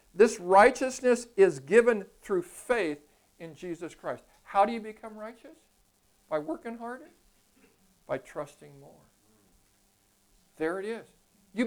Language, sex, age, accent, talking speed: English, male, 60-79, American, 125 wpm